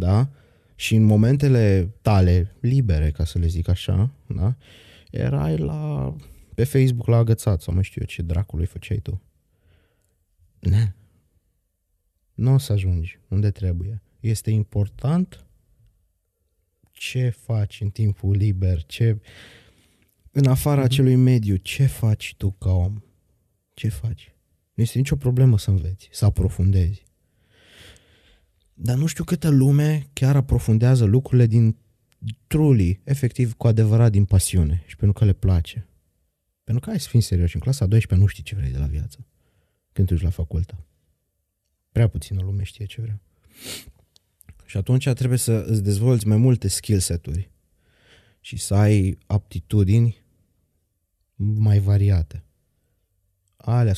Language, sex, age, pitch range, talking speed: Romanian, male, 20-39, 90-115 Hz, 135 wpm